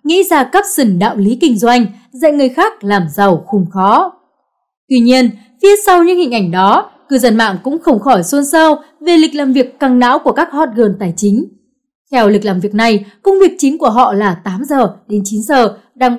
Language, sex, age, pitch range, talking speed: Vietnamese, female, 20-39, 220-305 Hz, 220 wpm